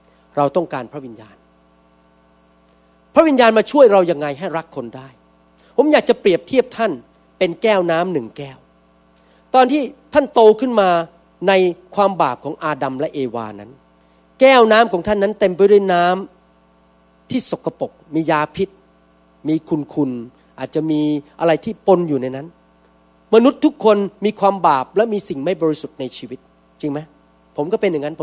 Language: Thai